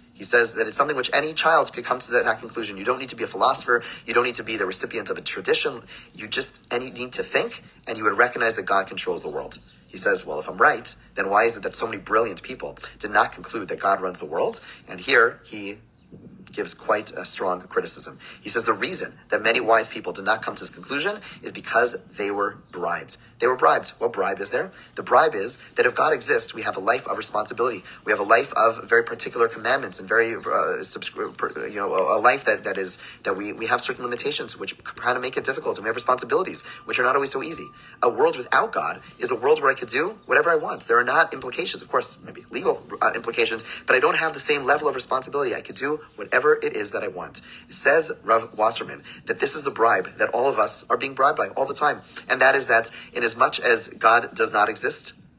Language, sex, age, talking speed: English, male, 30-49, 245 wpm